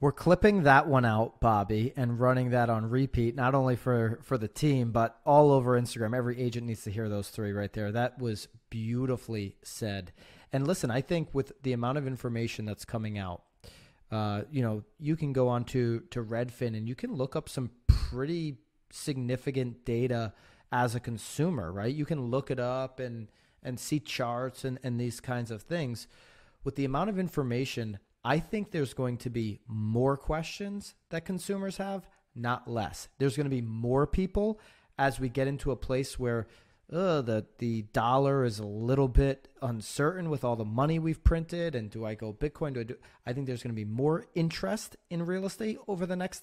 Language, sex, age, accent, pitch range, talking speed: English, male, 30-49, American, 115-140 Hz, 195 wpm